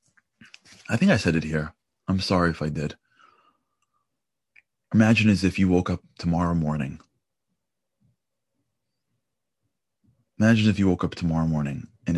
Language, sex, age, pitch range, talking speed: English, male, 30-49, 90-115 Hz, 135 wpm